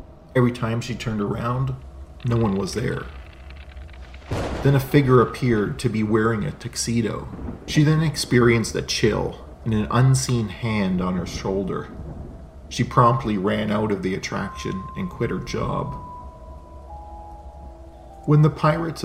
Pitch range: 80-120 Hz